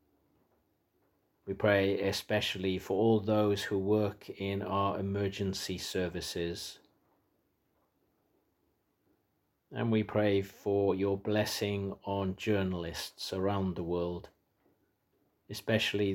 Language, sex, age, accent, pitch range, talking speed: English, male, 40-59, British, 95-105 Hz, 90 wpm